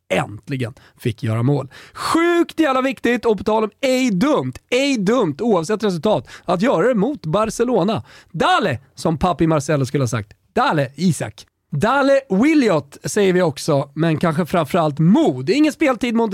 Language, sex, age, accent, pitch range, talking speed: Swedish, male, 30-49, native, 155-235 Hz, 155 wpm